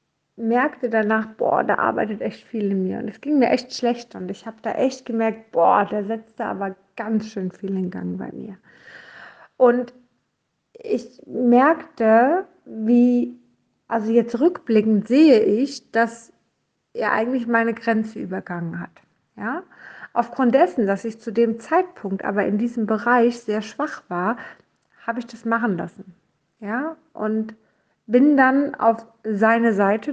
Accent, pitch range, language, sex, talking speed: German, 205-245 Hz, German, female, 155 wpm